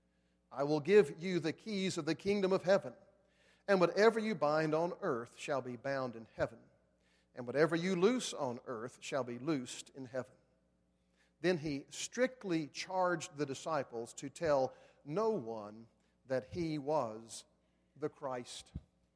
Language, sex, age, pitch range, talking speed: English, male, 50-69, 115-165 Hz, 150 wpm